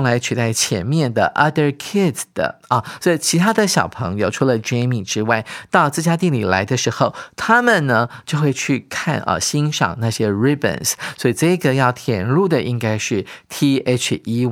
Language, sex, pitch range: Chinese, male, 115-150 Hz